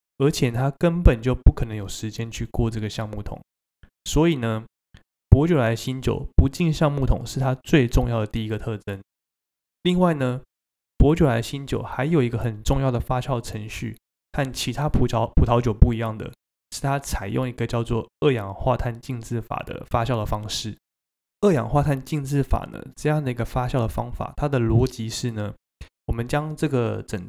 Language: Chinese